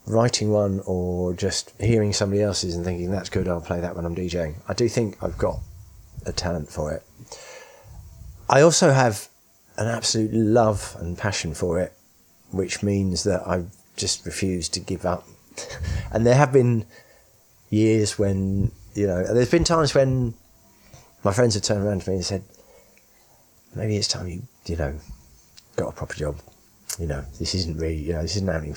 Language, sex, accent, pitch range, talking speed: English, male, British, 95-130 Hz, 180 wpm